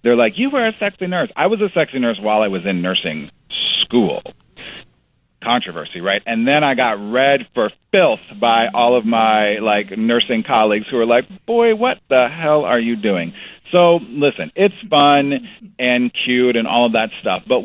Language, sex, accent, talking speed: English, male, American, 190 wpm